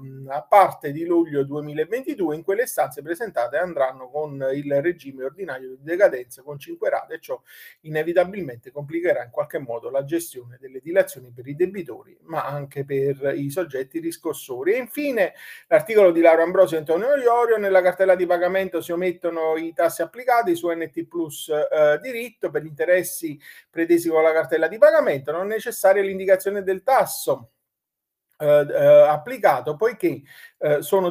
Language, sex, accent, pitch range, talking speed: Italian, male, native, 145-190 Hz, 155 wpm